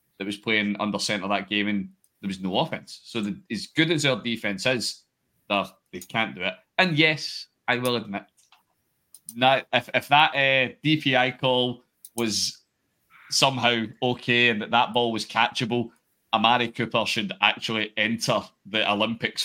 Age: 30-49